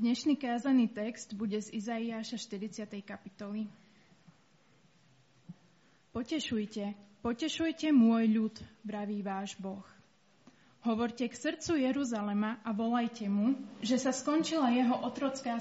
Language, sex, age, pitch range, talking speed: Slovak, female, 20-39, 210-255 Hz, 105 wpm